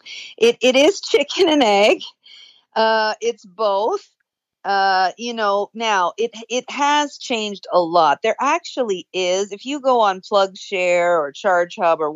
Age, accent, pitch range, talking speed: 50-69, American, 175-225 Hz, 155 wpm